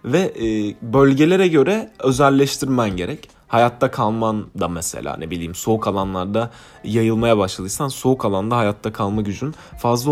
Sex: male